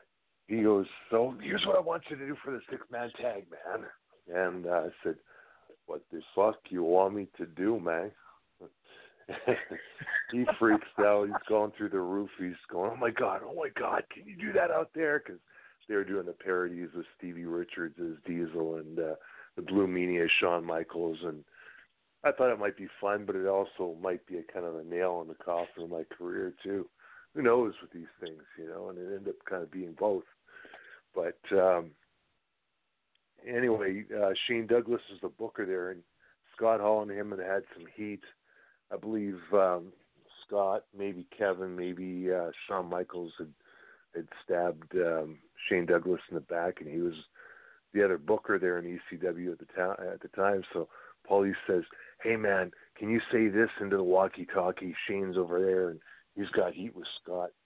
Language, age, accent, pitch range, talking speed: English, 50-69, American, 90-115 Hz, 185 wpm